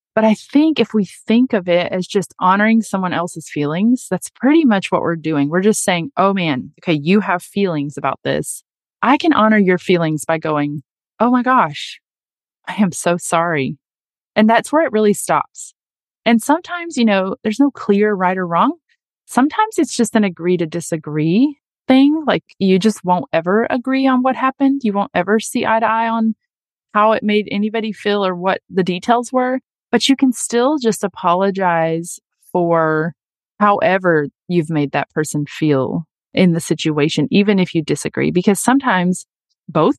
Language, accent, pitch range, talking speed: English, American, 160-225 Hz, 180 wpm